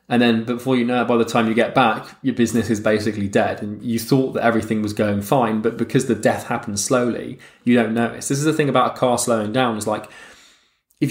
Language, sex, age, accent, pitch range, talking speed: English, male, 20-39, British, 115-135 Hz, 250 wpm